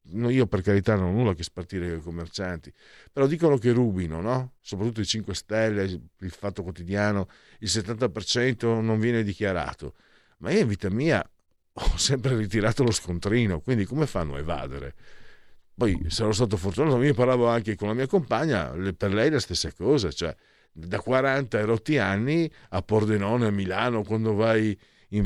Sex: male